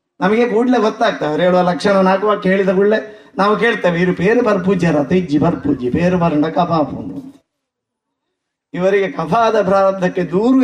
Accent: native